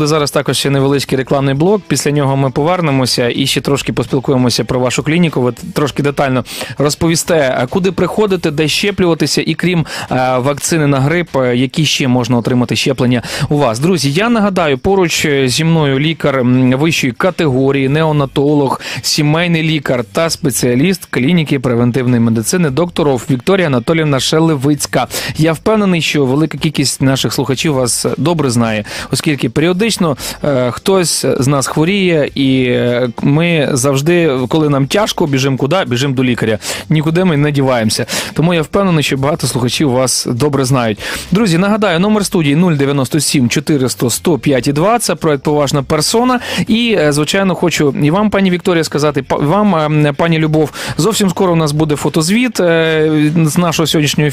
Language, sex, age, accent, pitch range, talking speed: Ukrainian, male, 30-49, native, 135-165 Hz, 145 wpm